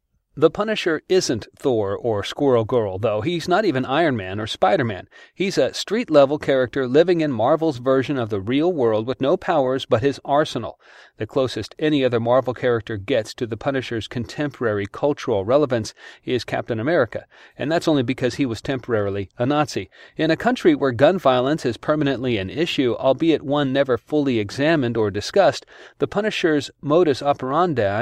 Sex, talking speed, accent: male, 170 wpm, American